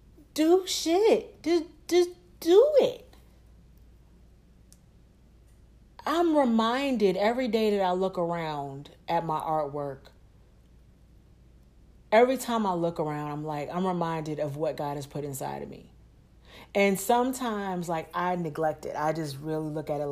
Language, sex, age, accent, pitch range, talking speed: English, female, 40-59, American, 160-235 Hz, 135 wpm